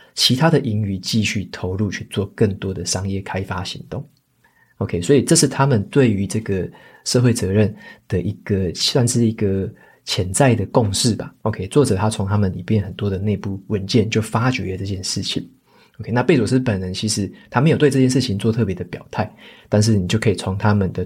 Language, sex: Chinese, male